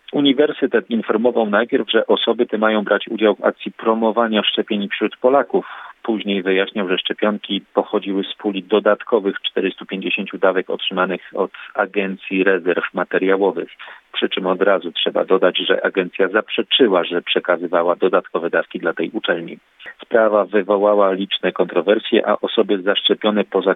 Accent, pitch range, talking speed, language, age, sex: native, 95-110 Hz, 135 wpm, Polish, 40-59, male